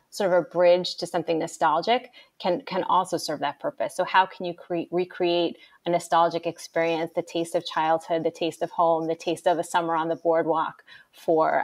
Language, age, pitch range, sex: English, 30-49, 165-180 Hz, female